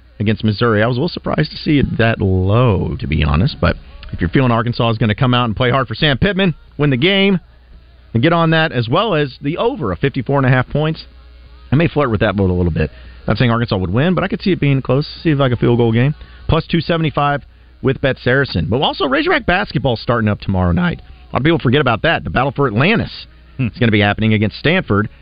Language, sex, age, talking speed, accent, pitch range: English, male, 40-59, 250 wpm, American, 100-145 Hz